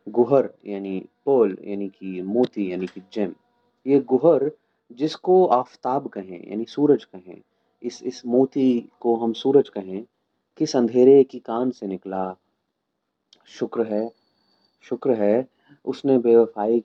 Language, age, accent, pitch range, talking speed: Hindi, 30-49, native, 100-120 Hz, 130 wpm